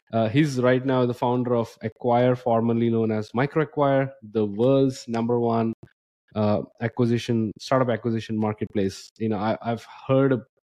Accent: Indian